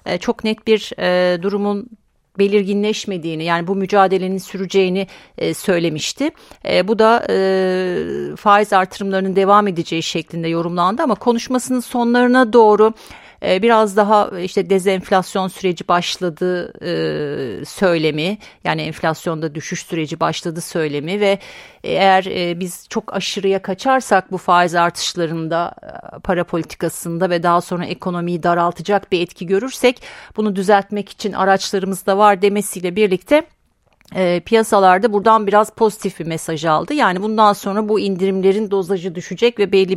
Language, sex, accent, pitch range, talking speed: Turkish, female, native, 175-210 Hz, 115 wpm